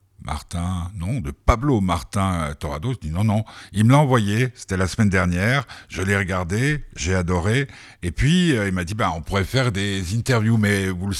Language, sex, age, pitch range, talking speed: French, male, 60-79, 90-115 Hz, 195 wpm